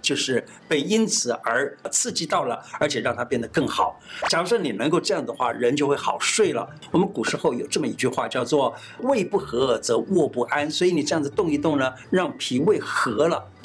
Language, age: Chinese, 60-79